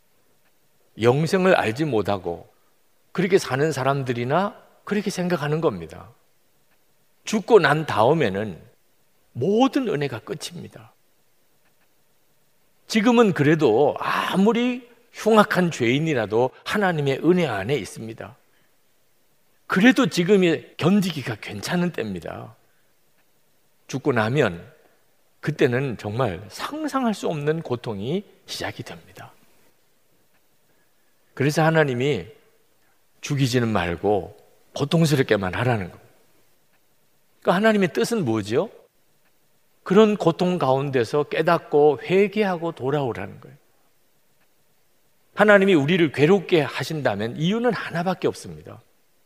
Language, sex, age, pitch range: Korean, male, 50-69, 140-200 Hz